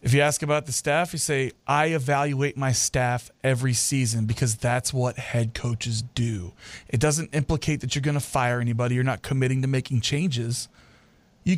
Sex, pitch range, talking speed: male, 120-150 Hz, 185 wpm